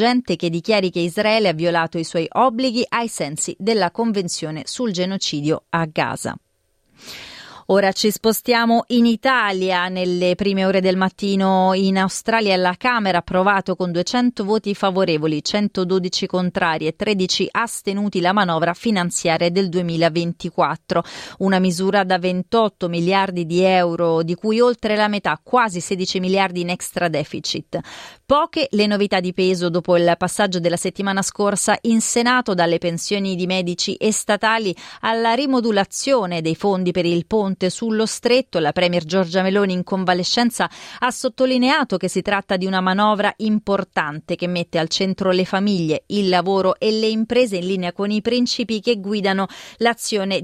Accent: native